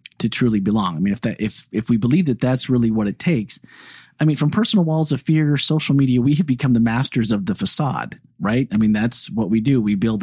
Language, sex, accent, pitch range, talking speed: English, male, American, 110-150 Hz, 265 wpm